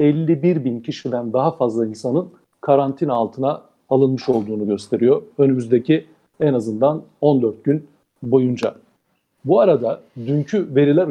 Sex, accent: male, native